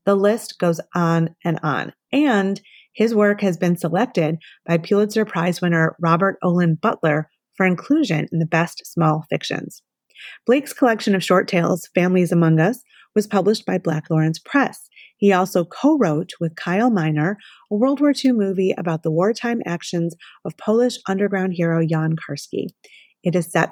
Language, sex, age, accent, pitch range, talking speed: English, female, 30-49, American, 170-220 Hz, 160 wpm